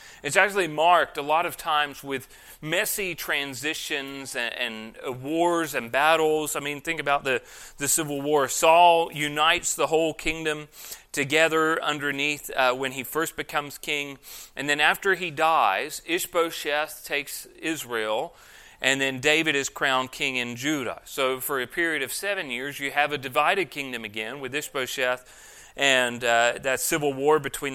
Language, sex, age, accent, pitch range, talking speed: English, male, 30-49, American, 135-160 Hz, 160 wpm